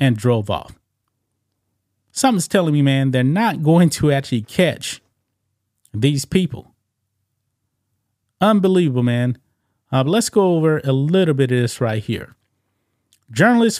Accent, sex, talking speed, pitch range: American, male, 125 wpm, 115-160 Hz